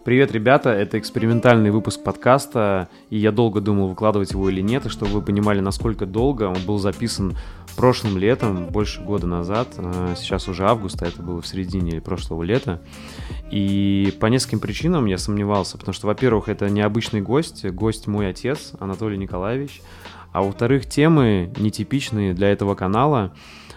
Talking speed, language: 155 wpm, Russian